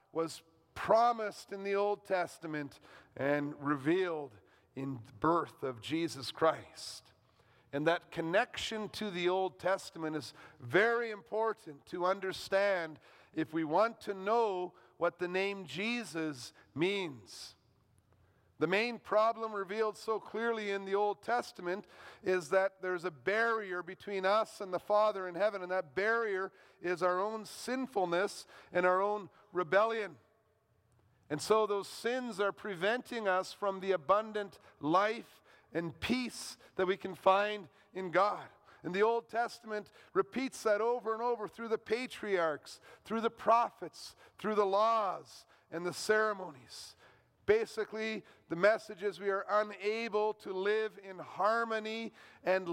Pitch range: 165-215 Hz